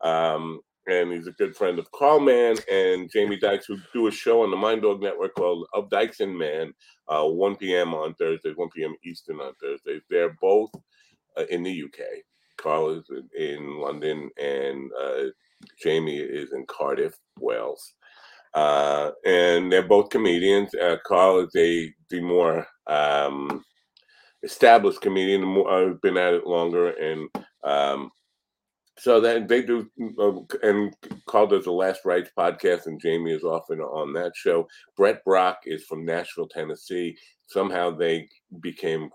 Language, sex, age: English, male, 40-59